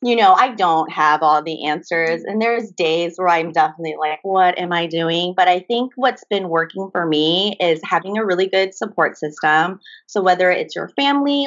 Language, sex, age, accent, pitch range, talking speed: English, female, 30-49, American, 165-235 Hz, 205 wpm